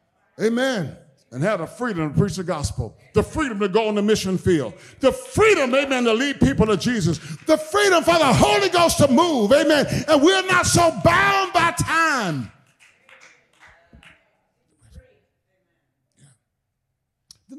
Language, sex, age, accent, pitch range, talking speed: English, male, 50-69, American, 130-215 Hz, 145 wpm